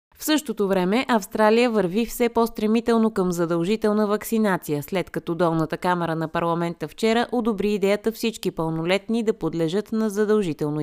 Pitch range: 165-220 Hz